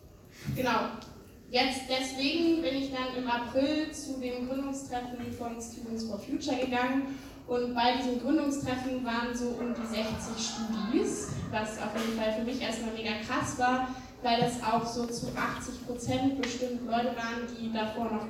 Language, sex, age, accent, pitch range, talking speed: German, female, 20-39, German, 230-255 Hz, 160 wpm